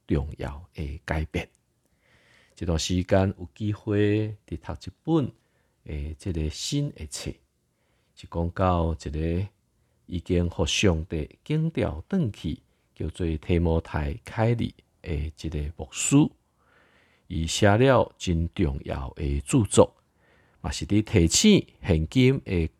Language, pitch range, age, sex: Chinese, 80-115 Hz, 50-69, male